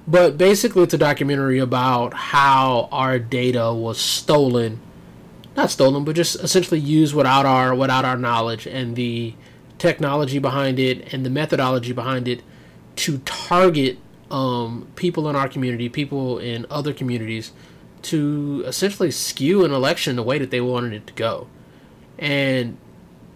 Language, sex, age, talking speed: English, male, 20-39, 145 wpm